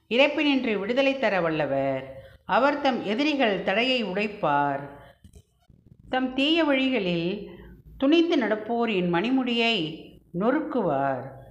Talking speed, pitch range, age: 80 wpm, 175-265 Hz, 50-69